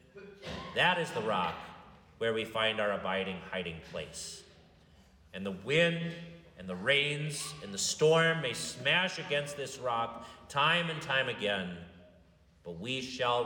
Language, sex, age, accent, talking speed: English, male, 40-59, American, 145 wpm